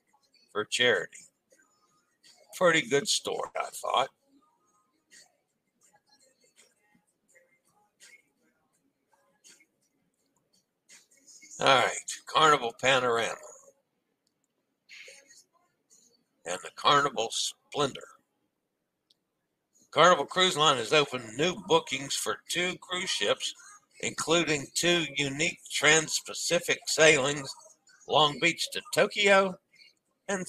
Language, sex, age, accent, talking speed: English, male, 60-79, American, 70 wpm